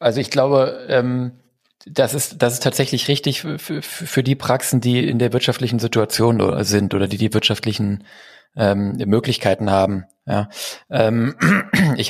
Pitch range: 110-125 Hz